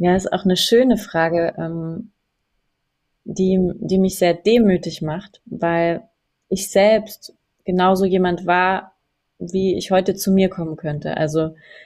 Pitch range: 165-200 Hz